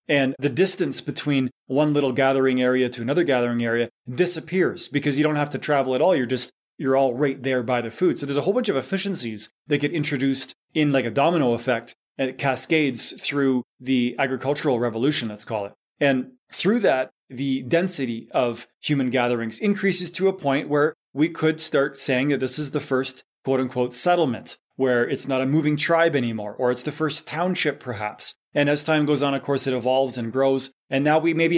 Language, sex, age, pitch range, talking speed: English, male, 20-39, 130-155 Hz, 205 wpm